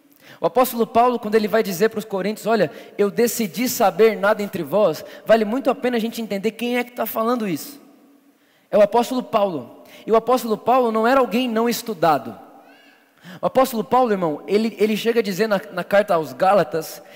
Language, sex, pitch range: Portuguese, male, 215-260 Hz